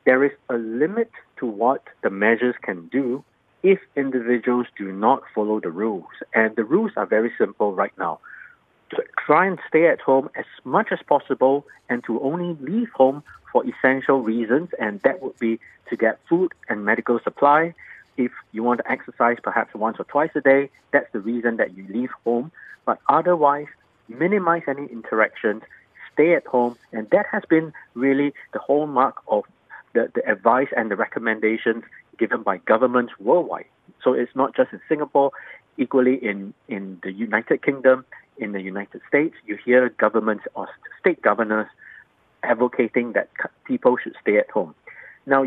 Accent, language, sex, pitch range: Malaysian, Korean, male, 115-145 Hz